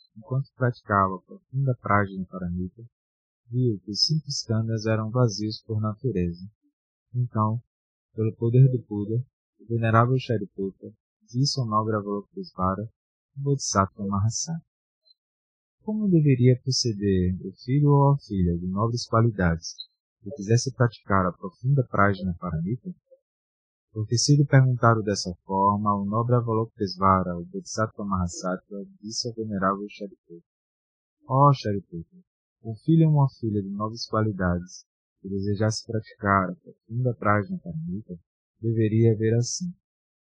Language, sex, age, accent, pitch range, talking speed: Portuguese, male, 20-39, Brazilian, 100-125 Hz, 130 wpm